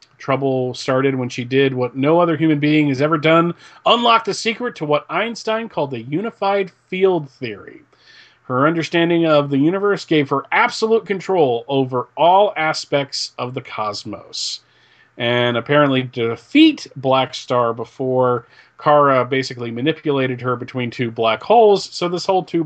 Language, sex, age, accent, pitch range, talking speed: English, male, 40-59, American, 130-175 Hz, 155 wpm